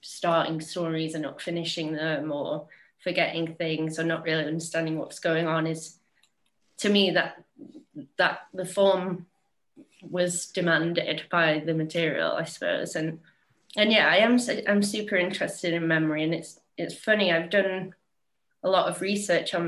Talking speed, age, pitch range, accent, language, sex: 155 wpm, 20-39, 165-195 Hz, British, English, female